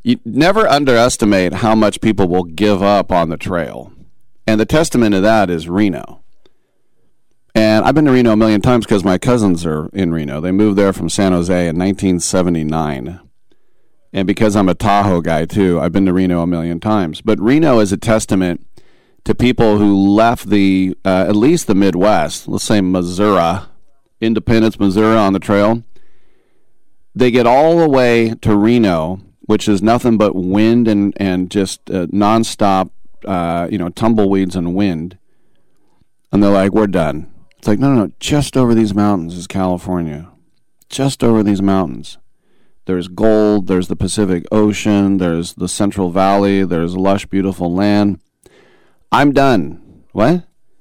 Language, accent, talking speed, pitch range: English, American, 170 wpm, 90-110 Hz